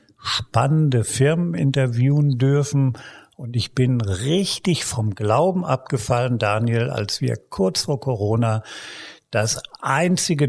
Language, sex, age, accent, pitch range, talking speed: German, male, 50-69, German, 110-140 Hz, 110 wpm